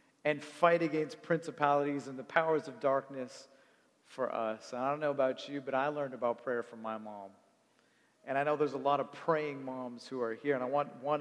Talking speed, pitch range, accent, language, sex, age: 220 wpm, 140-195 Hz, American, English, male, 40-59